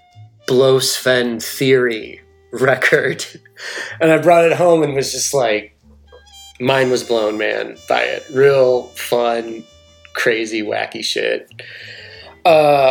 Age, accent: 30-49, American